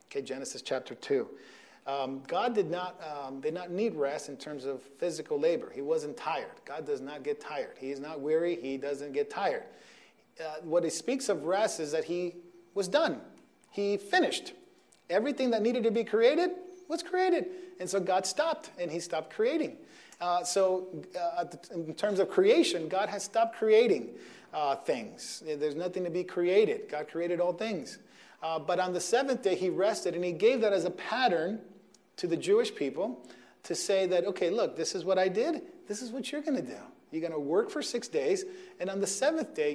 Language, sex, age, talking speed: English, male, 40-59, 195 wpm